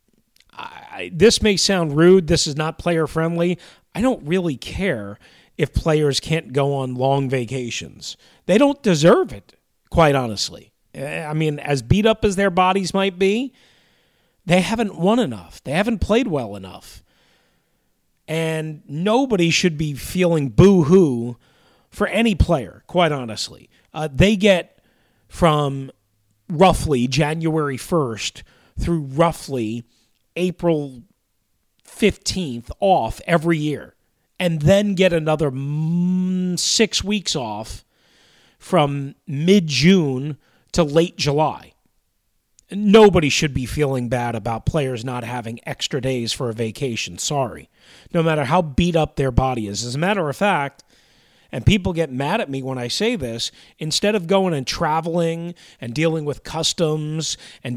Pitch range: 130-180 Hz